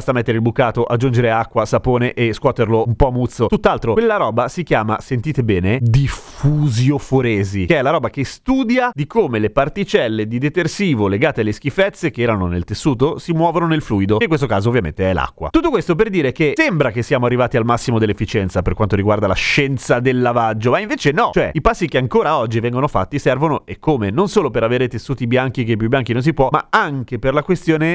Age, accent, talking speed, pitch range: 30-49, native, 215 wpm, 115-150 Hz